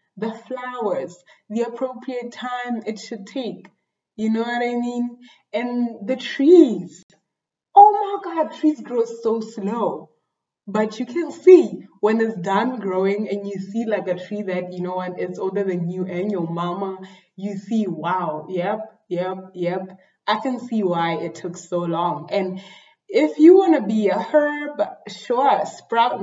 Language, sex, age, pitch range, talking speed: English, female, 20-39, 185-235 Hz, 165 wpm